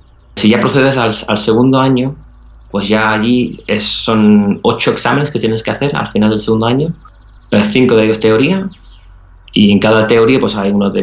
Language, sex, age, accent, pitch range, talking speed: Spanish, male, 20-39, Spanish, 100-120 Hz, 190 wpm